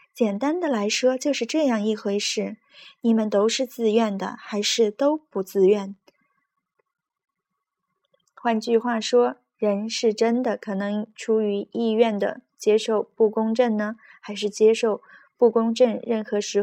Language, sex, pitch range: Chinese, female, 205-235 Hz